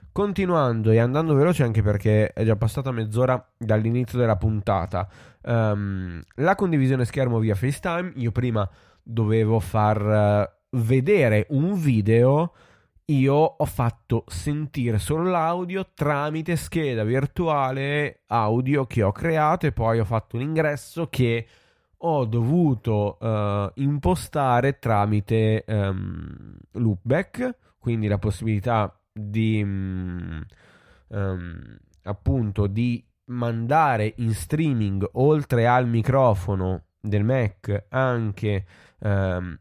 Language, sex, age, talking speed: Italian, male, 20-39, 100 wpm